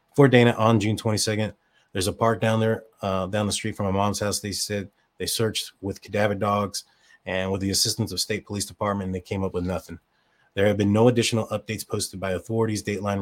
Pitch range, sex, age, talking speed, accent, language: 95-110 Hz, male, 30-49, 220 wpm, American, English